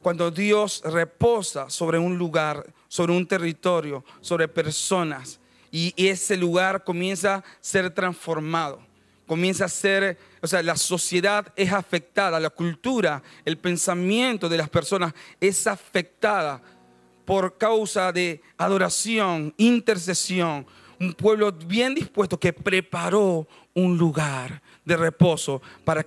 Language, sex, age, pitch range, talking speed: Spanish, male, 40-59, 155-195 Hz, 120 wpm